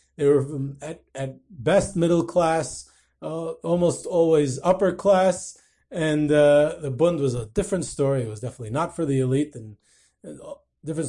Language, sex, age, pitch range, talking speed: English, male, 30-49, 160-220 Hz, 170 wpm